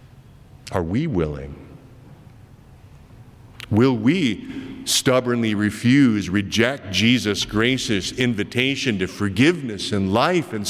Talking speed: 90 wpm